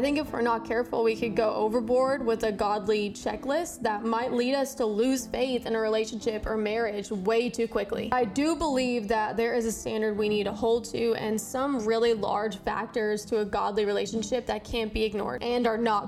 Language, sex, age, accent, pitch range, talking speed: English, female, 10-29, American, 215-245 Hz, 215 wpm